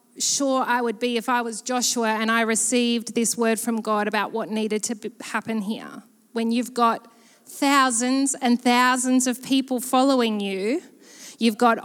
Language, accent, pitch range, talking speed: English, Australian, 240-300 Hz, 165 wpm